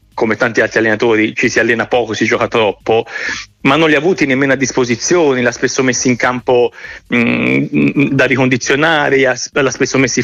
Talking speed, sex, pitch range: 190 wpm, male, 125-150 Hz